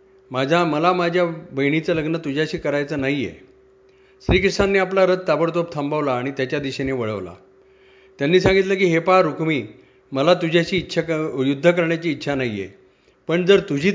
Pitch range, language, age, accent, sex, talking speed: 135-175 Hz, Marathi, 50-69, native, male, 150 wpm